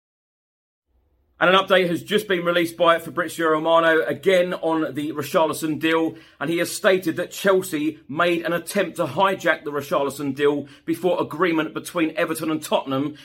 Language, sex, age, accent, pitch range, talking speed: English, male, 40-59, British, 135-170 Hz, 160 wpm